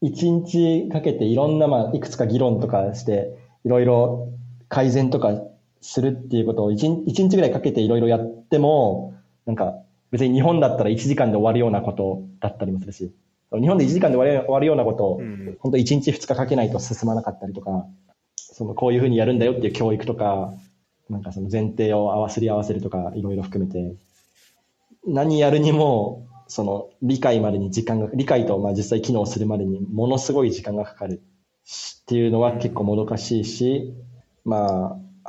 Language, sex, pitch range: Japanese, male, 100-130 Hz